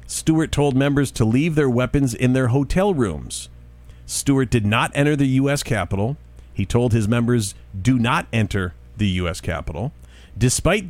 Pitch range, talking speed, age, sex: 105-145 Hz, 160 wpm, 50-69, male